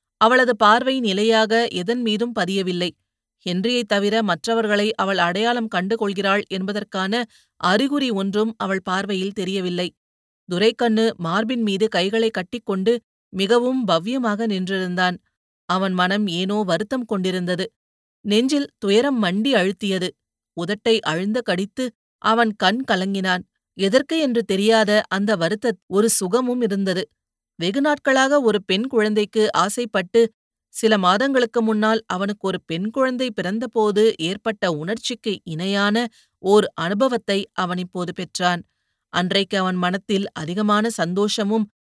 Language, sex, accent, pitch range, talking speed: Tamil, female, native, 185-230 Hz, 110 wpm